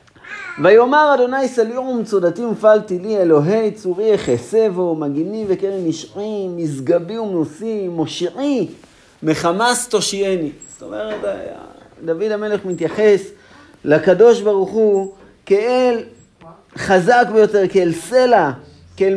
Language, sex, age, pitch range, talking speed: Hebrew, male, 40-59, 175-230 Hz, 95 wpm